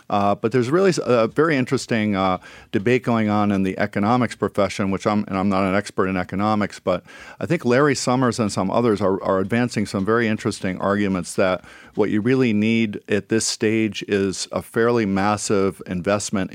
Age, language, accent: 50-69, English, American